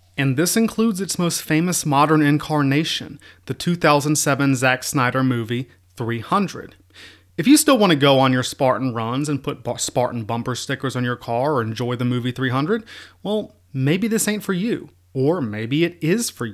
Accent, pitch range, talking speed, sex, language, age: American, 120-160 Hz, 175 wpm, male, English, 30-49